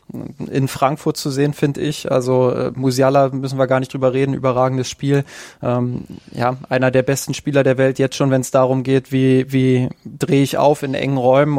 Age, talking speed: 20-39, 195 wpm